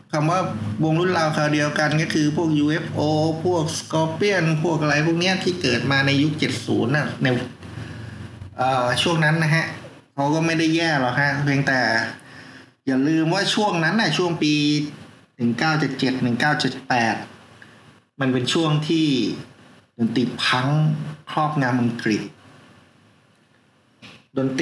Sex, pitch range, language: male, 130-160 Hz, Thai